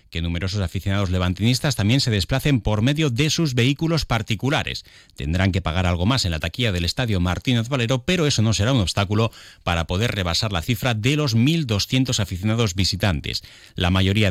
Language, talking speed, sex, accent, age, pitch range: Spanish, 180 wpm, male, Spanish, 30-49, 95-130 Hz